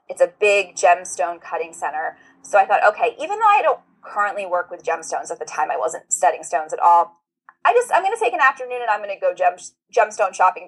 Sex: female